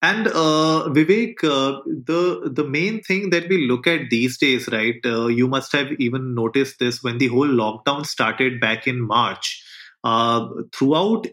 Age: 30-49